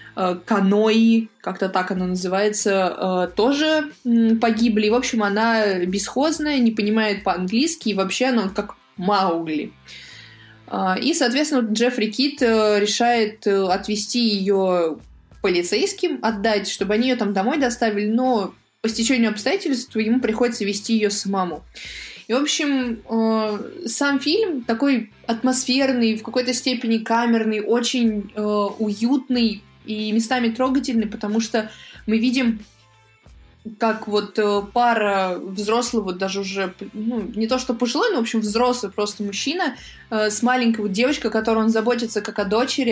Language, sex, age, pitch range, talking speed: Russian, female, 20-39, 205-245 Hz, 130 wpm